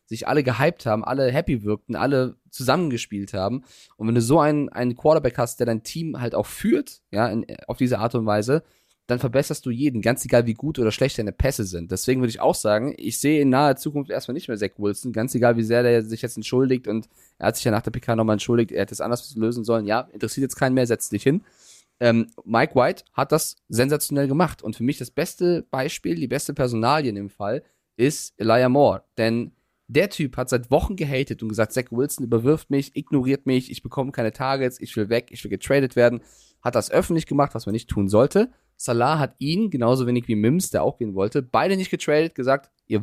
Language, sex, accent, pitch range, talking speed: German, male, German, 115-145 Hz, 225 wpm